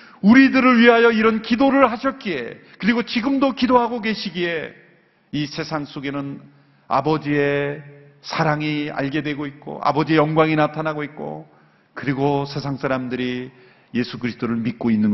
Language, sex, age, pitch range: Korean, male, 40-59, 145-215 Hz